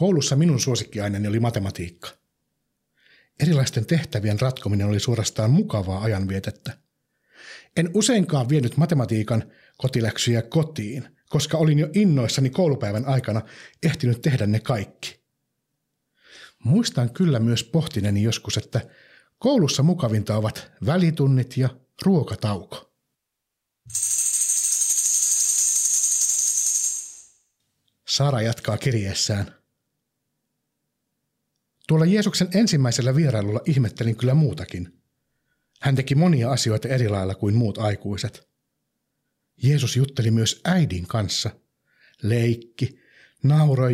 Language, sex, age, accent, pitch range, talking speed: Finnish, male, 60-79, native, 110-150 Hz, 90 wpm